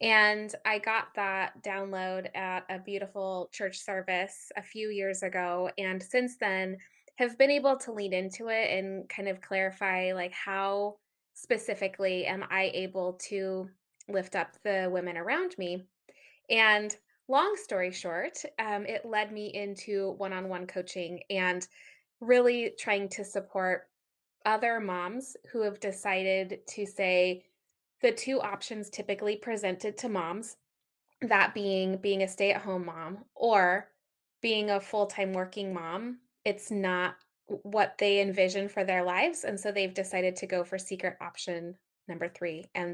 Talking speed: 145 wpm